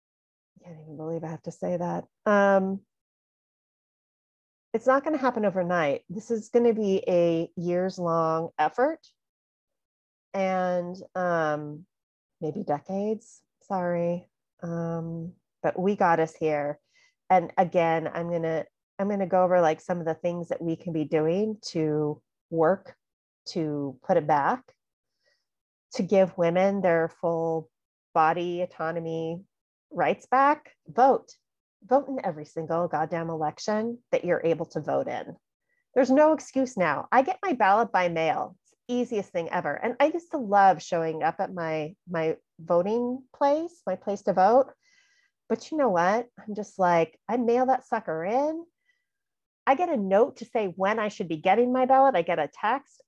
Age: 30-49